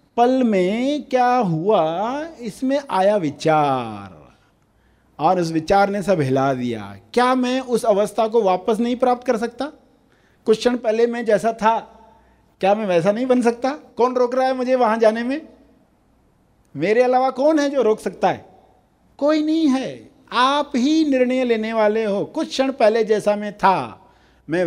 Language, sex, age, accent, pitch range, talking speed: Hindi, male, 50-69, native, 170-245 Hz, 165 wpm